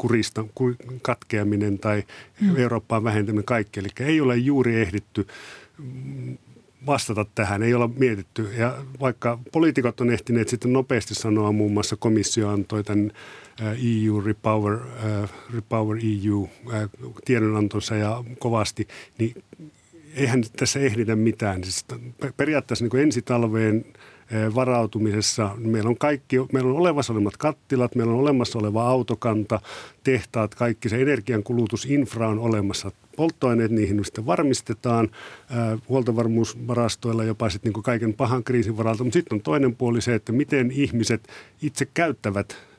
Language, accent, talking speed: Finnish, native, 115 wpm